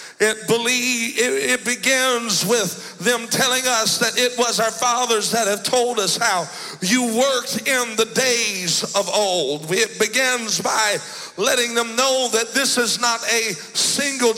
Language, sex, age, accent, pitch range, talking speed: English, male, 60-79, American, 230-265 Hz, 160 wpm